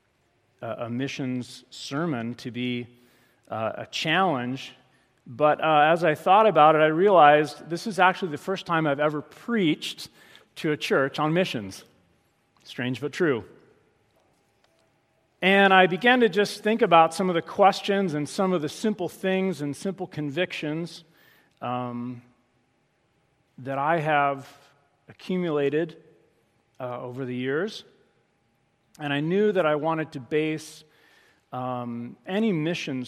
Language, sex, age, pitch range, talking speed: English, male, 40-59, 125-170 Hz, 135 wpm